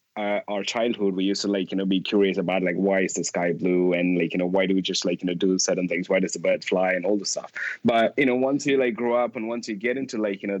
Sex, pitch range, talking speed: male, 95-115 Hz, 325 wpm